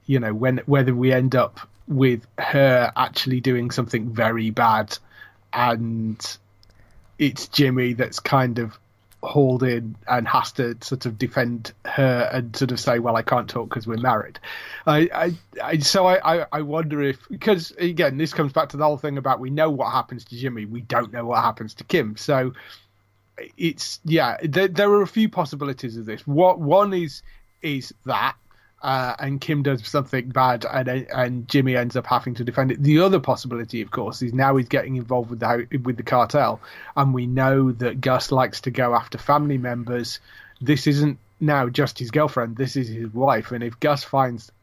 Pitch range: 120-140 Hz